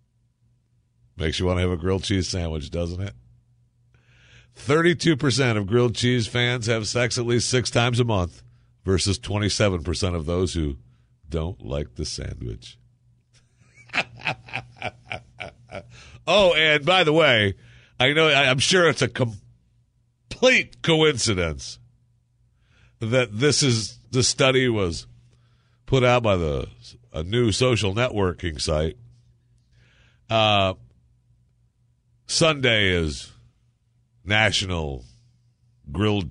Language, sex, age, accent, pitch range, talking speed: English, male, 50-69, American, 105-125 Hz, 110 wpm